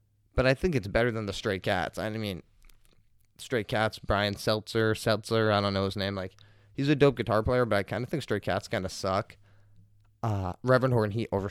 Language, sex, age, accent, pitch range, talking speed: English, male, 20-39, American, 100-120 Hz, 210 wpm